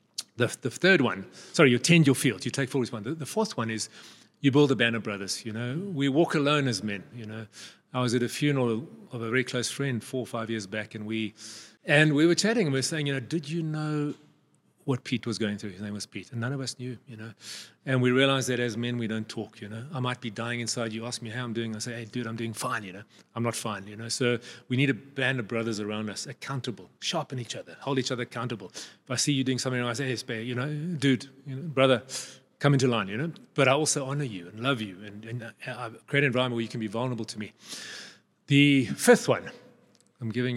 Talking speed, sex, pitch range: 260 wpm, male, 115-140 Hz